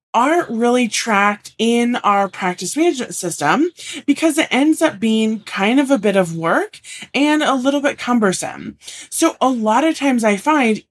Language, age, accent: English, 20-39, American